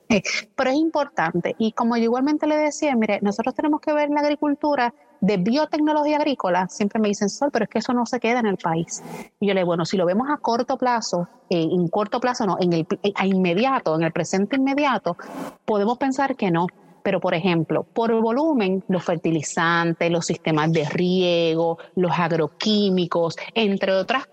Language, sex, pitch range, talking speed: Spanish, female, 180-250 Hz, 190 wpm